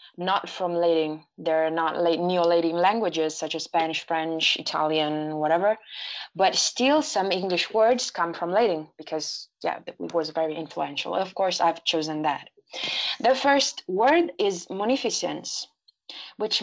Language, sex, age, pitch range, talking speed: English, female, 20-39, 175-255 Hz, 140 wpm